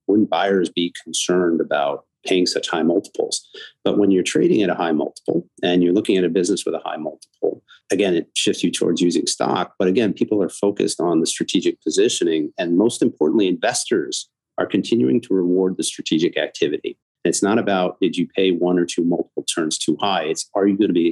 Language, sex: English, male